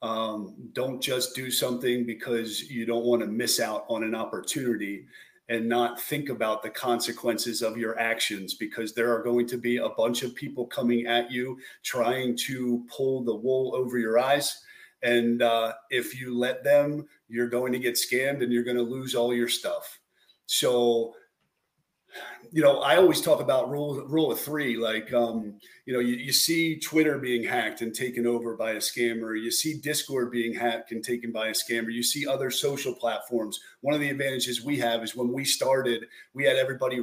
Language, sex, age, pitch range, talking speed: English, male, 40-59, 120-140 Hz, 195 wpm